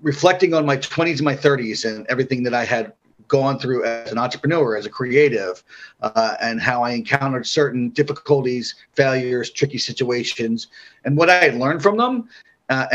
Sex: male